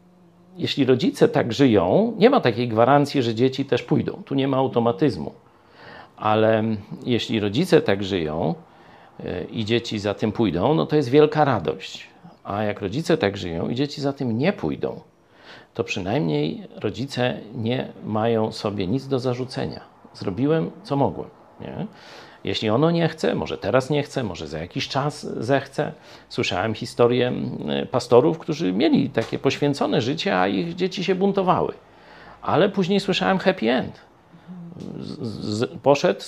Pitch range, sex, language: 115-155 Hz, male, Polish